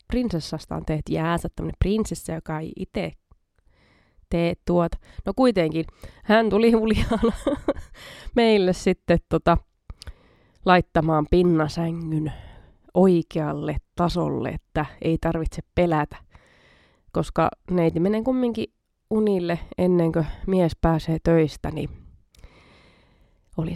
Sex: female